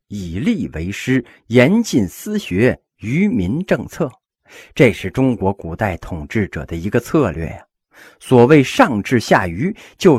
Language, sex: Chinese, male